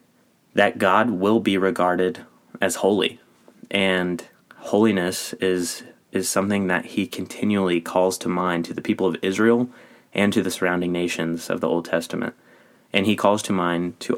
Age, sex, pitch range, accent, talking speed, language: 30-49, male, 90-100 Hz, American, 160 wpm, English